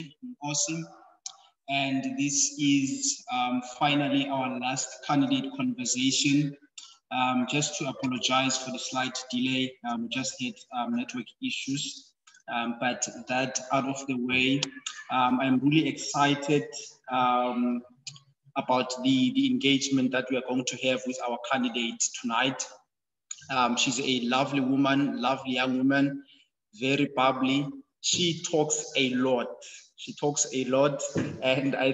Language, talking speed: English, 135 wpm